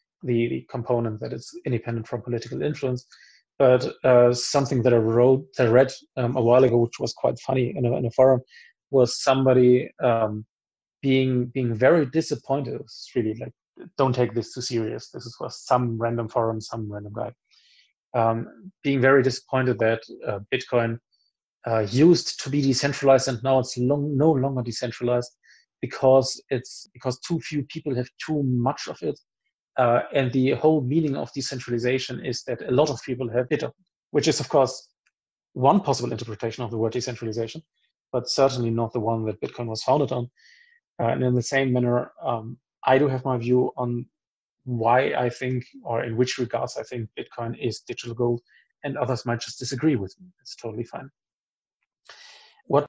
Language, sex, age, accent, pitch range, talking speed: English, male, 30-49, German, 120-135 Hz, 180 wpm